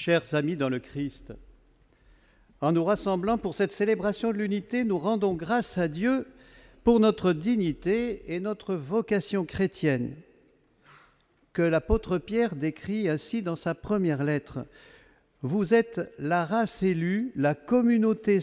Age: 50-69